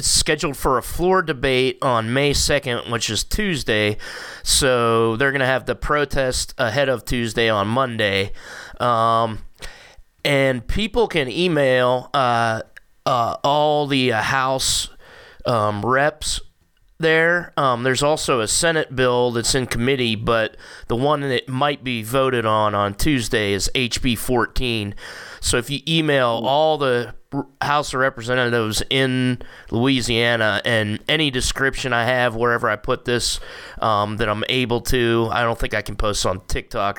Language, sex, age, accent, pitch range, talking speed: English, male, 30-49, American, 115-135 Hz, 150 wpm